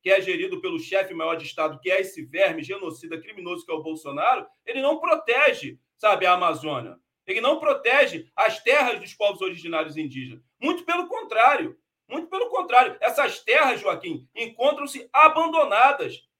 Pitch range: 200-315 Hz